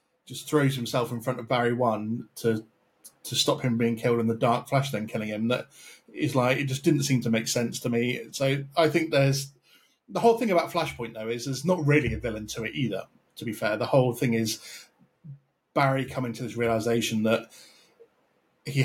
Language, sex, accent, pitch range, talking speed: English, male, British, 115-145 Hz, 210 wpm